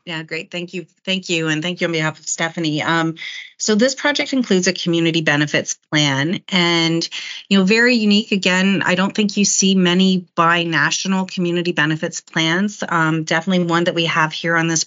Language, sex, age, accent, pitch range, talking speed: English, female, 30-49, American, 160-185 Hz, 190 wpm